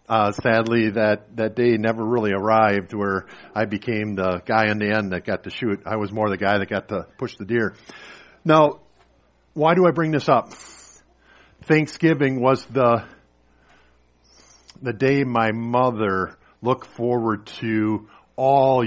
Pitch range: 105-145 Hz